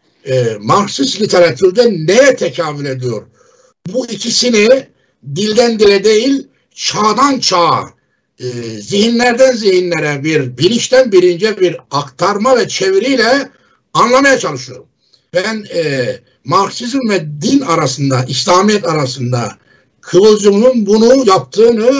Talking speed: 100 wpm